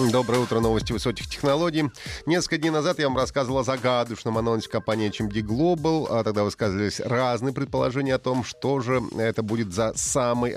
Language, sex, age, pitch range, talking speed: Russian, male, 30-49, 105-145 Hz, 165 wpm